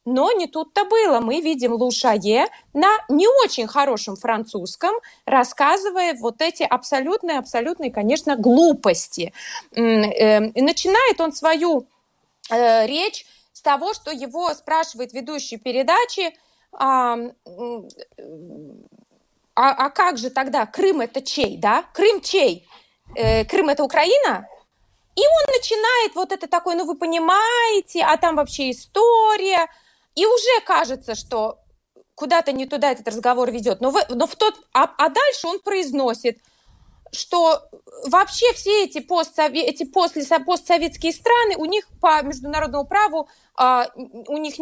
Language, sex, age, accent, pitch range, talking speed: Russian, female, 20-39, native, 260-360 Hz, 125 wpm